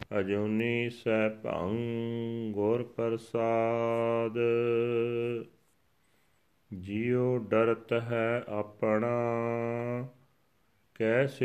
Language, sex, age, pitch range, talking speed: Punjabi, male, 40-59, 115-125 Hz, 50 wpm